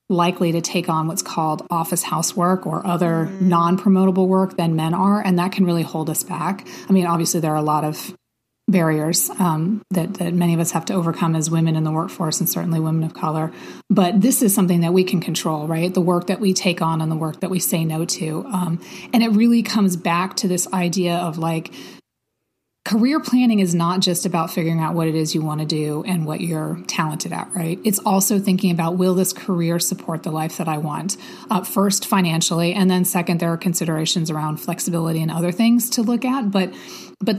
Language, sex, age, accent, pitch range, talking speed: English, female, 30-49, American, 165-195 Hz, 220 wpm